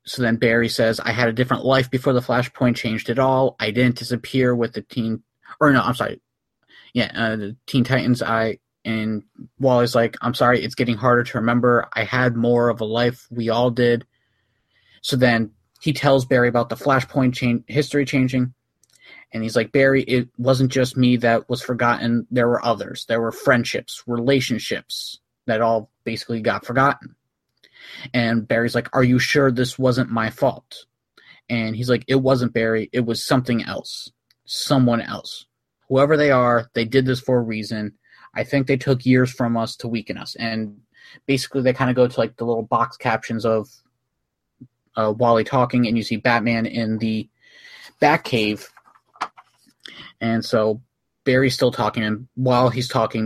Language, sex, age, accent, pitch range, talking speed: English, male, 30-49, American, 115-130 Hz, 175 wpm